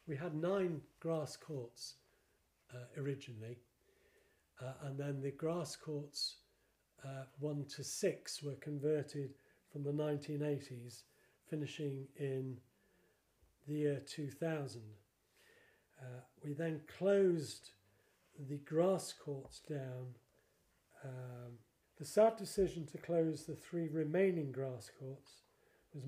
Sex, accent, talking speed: male, British, 110 wpm